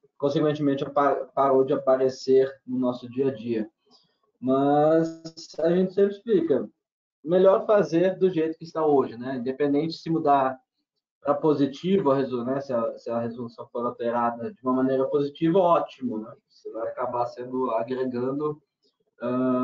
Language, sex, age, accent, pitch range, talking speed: Portuguese, male, 20-39, Brazilian, 130-170 Hz, 145 wpm